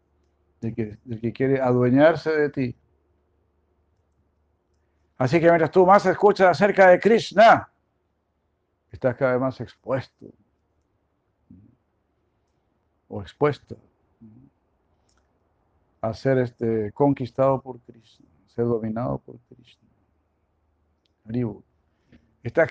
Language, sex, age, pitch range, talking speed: Spanish, male, 60-79, 95-130 Hz, 100 wpm